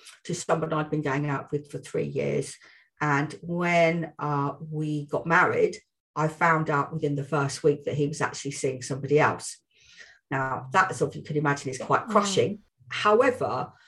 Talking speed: 180 wpm